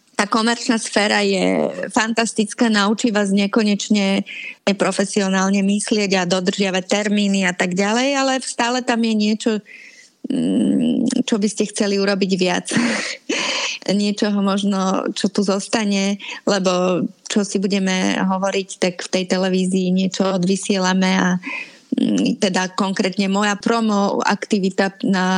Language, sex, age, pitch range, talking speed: Slovak, female, 30-49, 195-230 Hz, 120 wpm